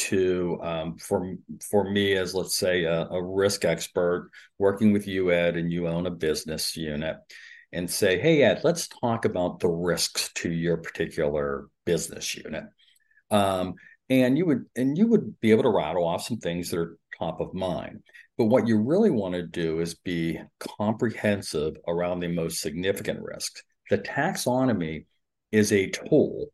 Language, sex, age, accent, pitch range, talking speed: English, male, 50-69, American, 90-115 Hz, 170 wpm